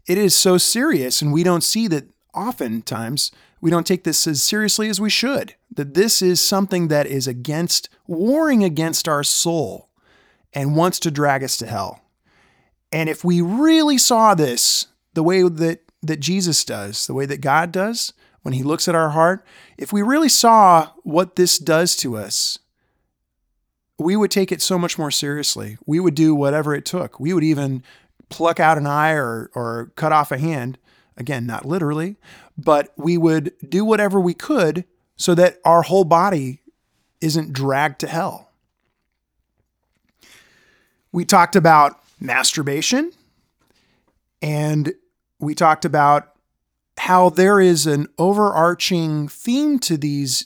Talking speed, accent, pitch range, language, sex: 155 wpm, American, 145-185 Hz, English, male